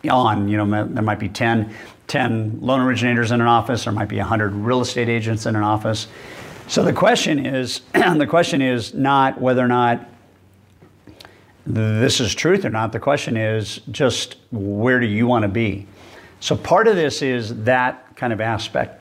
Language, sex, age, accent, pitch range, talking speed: English, male, 50-69, American, 110-125 Hz, 185 wpm